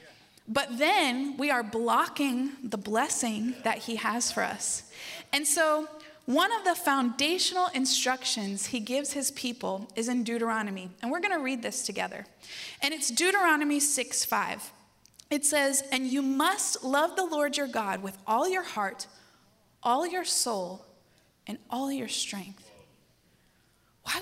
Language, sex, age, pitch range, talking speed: English, female, 20-39, 225-290 Hz, 150 wpm